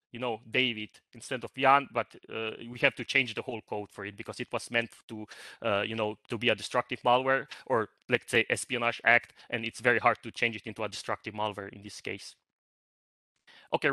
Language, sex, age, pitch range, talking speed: English, male, 30-49, 110-130 Hz, 215 wpm